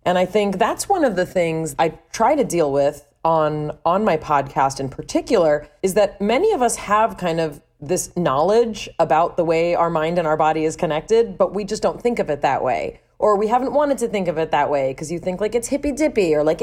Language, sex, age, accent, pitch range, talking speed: English, female, 30-49, American, 155-210 Hz, 240 wpm